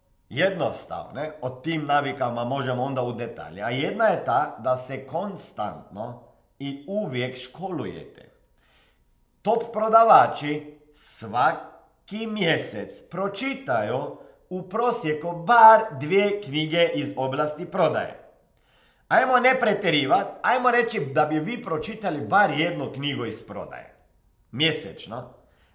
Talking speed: 105 wpm